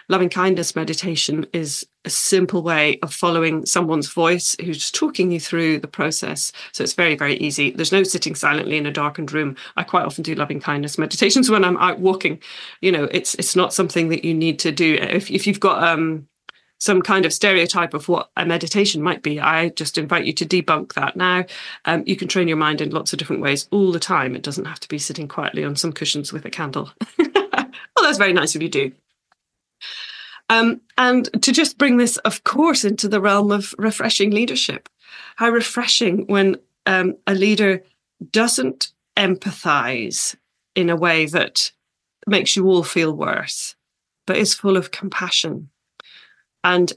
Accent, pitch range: British, 160-195 Hz